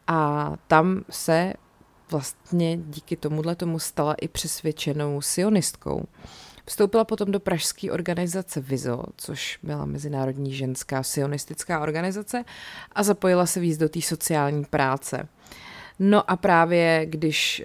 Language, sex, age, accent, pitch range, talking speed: Czech, female, 30-49, native, 150-175 Hz, 120 wpm